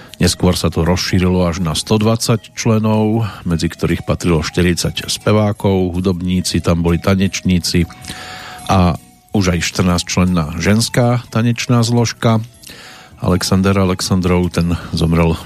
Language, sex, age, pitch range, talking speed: Slovak, male, 50-69, 90-105 Hz, 115 wpm